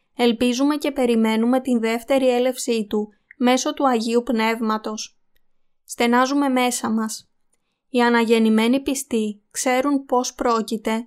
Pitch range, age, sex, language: 225-260 Hz, 20-39, female, Greek